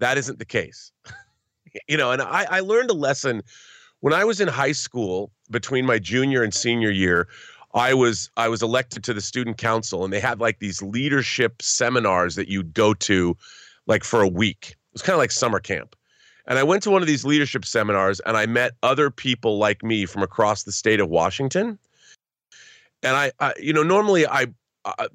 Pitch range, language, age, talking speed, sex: 105-140 Hz, English, 30-49, 205 wpm, male